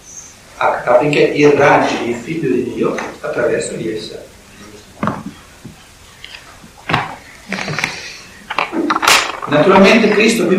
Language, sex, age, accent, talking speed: Italian, male, 60-79, native, 70 wpm